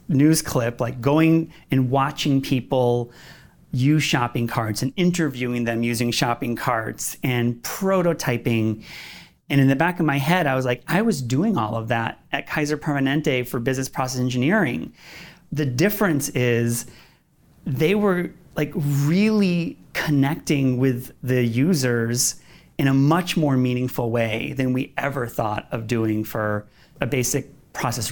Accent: American